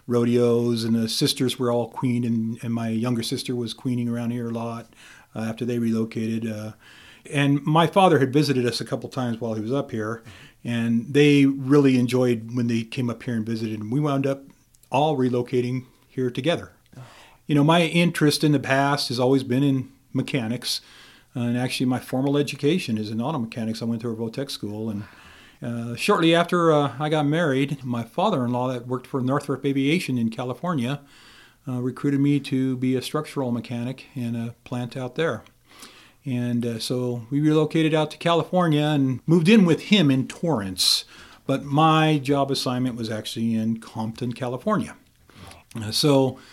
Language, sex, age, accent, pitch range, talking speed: English, male, 40-59, American, 115-140 Hz, 180 wpm